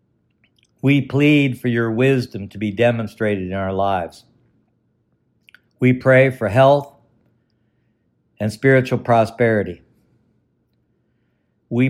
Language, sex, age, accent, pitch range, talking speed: English, male, 60-79, American, 110-130 Hz, 95 wpm